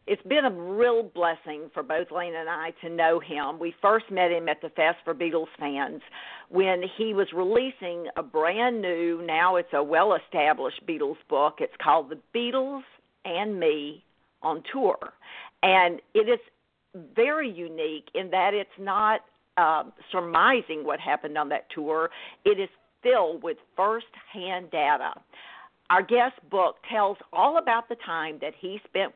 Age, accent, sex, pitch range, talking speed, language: 50-69, American, female, 165-235 Hz, 160 wpm, English